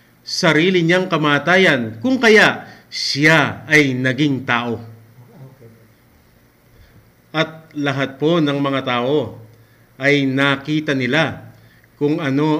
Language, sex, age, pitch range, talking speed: English, male, 50-69, 130-160 Hz, 95 wpm